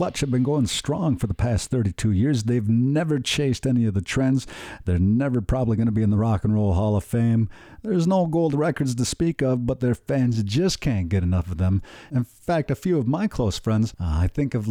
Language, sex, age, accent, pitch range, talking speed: English, male, 50-69, American, 100-135 Hz, 235 wpm